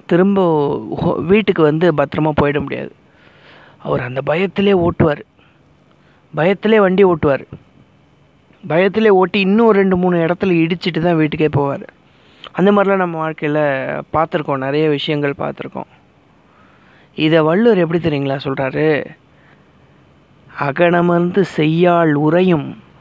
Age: 30-49